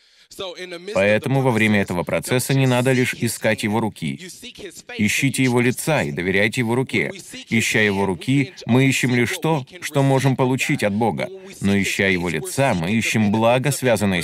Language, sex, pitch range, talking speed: Russian, male, 105-140 Hz, 160 wpm